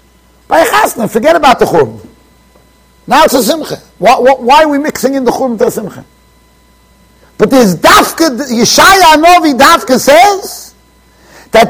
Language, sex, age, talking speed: English, male, 50-69, 140 wpm